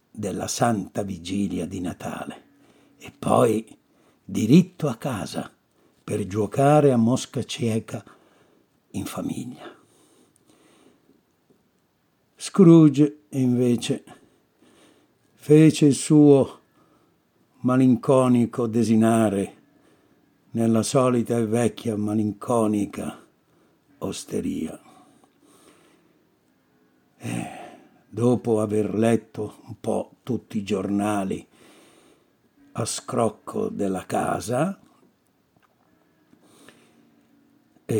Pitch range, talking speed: 105-140 Hz, 70 wpm